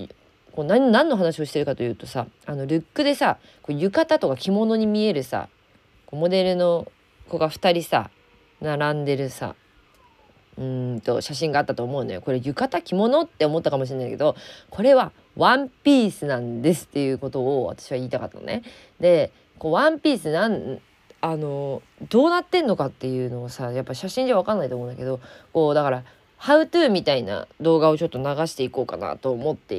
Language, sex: Japanese, female